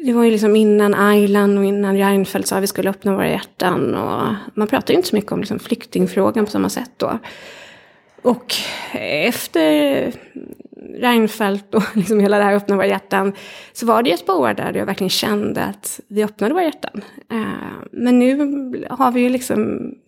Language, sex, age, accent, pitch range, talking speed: Swedish, female, 20-39, native, 195-235 Hz, 180 wpm